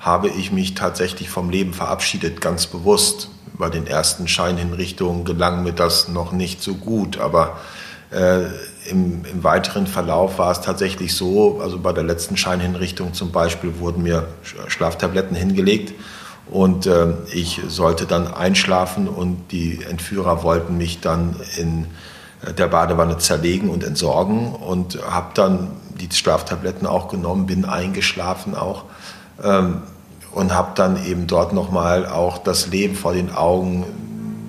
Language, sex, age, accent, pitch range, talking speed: German, male, 40-59, German, 85-100 Hz, 145 wpm